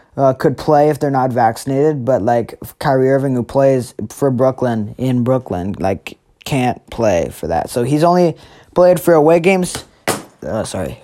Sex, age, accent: male, 20-39, American